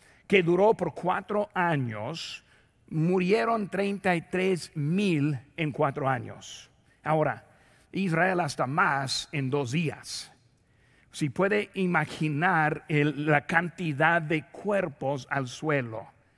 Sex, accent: male, Mexican